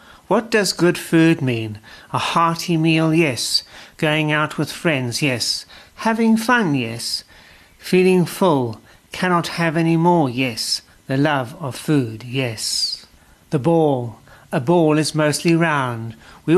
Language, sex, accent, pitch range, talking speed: English, male, British, 130-165 Hz, 135 wpm